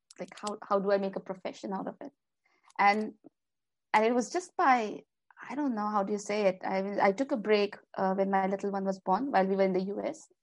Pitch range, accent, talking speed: 190-225 Hz, Indian, 245 wpm